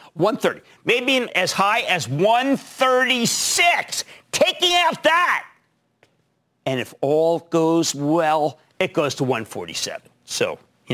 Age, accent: 50-69, American